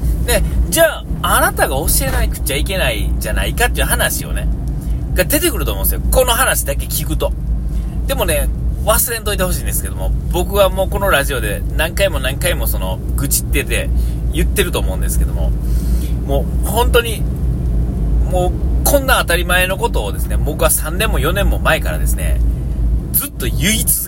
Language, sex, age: Japanese, male, 30-49